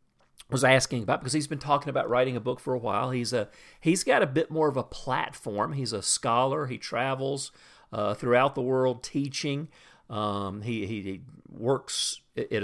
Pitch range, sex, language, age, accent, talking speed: 120-150 Hz, male, English, 50-69, American, 190 wpm